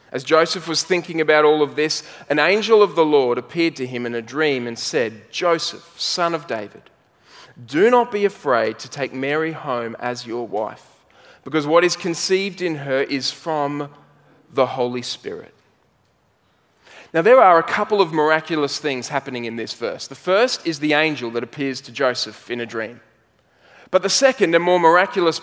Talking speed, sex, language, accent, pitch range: 180 wpm, male, English, Australian, 125-175 Hz